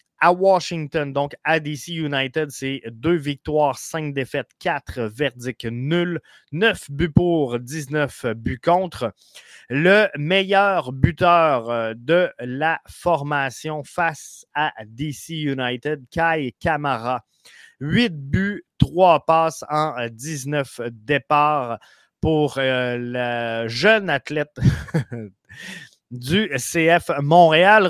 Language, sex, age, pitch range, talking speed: French, male, 30-49, 135-175 Hz, 105 wpm